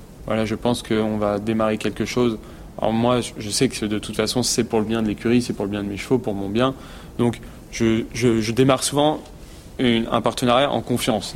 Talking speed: 225 wpm